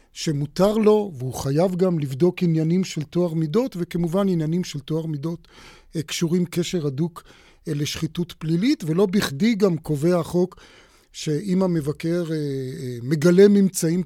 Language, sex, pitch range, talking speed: Hebrew, male, 160-190 Hz, 125 wpm